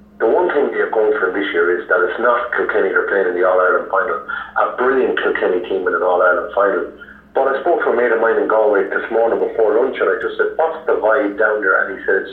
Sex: male